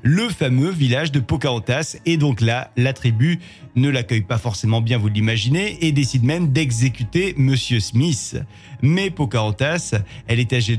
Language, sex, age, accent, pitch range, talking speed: French, male, 40-59, French, 120-155 Hz, 155 wpm